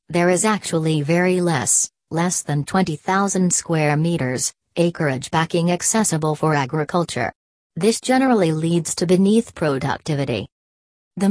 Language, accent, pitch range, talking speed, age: English, American, 150-175 Hz, 115 wpm, 40-59